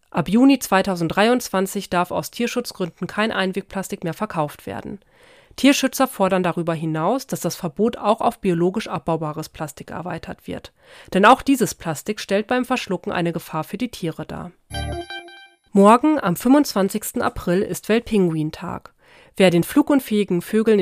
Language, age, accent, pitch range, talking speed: German, 40-59, German, 175-230 Hz, 140 wpm